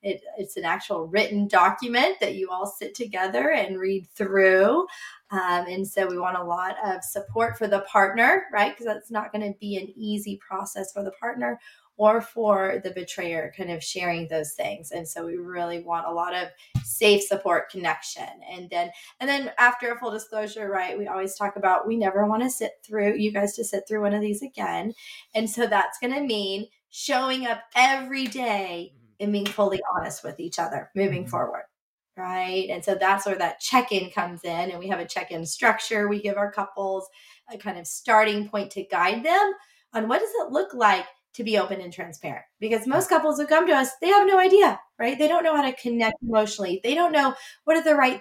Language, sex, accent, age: English, female, American, 20-39